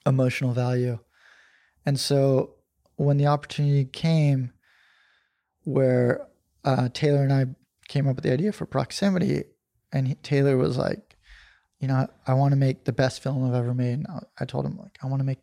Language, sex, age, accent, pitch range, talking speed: English, male, 20-39, American, 130-155 Hz, 185 wpm